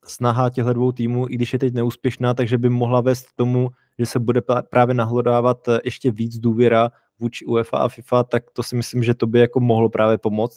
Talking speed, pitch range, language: 215 wpm, 110-120 Hz, Czech